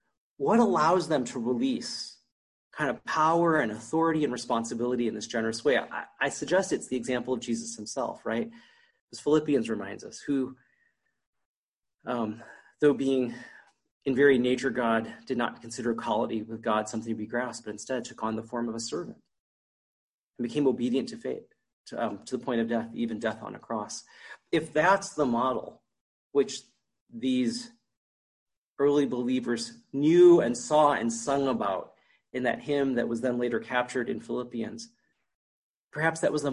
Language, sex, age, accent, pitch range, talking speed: English, male, 30-49, American, 115-150 Hz, 165 wpm